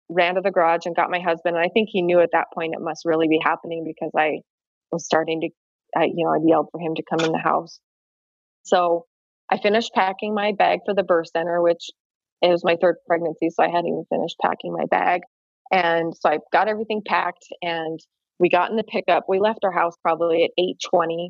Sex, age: female, 20-39